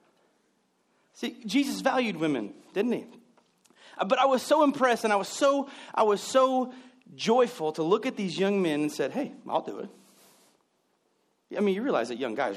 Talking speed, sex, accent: 180 wpm, male, American